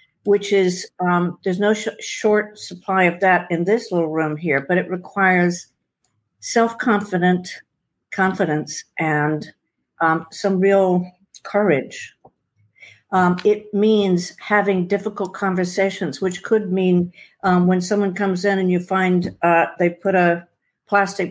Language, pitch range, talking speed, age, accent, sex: English, 170-200 Hz, 130 wpm, 60-79, American, female